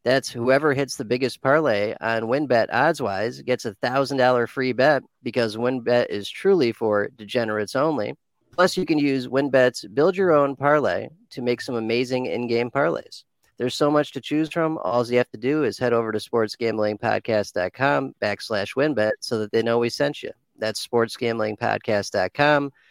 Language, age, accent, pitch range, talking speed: English, 40-59, American, 110-135 Hz, 160 wpm